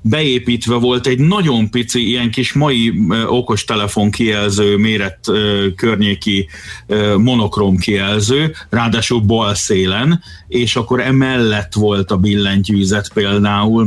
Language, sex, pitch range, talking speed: Hungarian, male, 100-135 Hz, 115 wpm